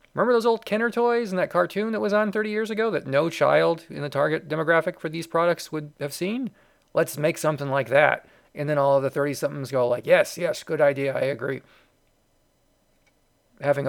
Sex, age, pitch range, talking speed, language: male, 40-59, 140-175 Hz, 205 wpm, English